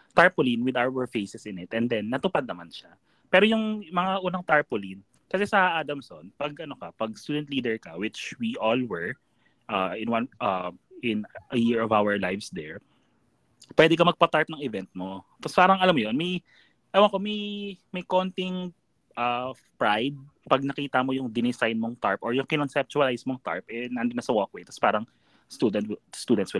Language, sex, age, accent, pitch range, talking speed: Filipino, male, 20-39, native, 115-180 Hz, 190 wpm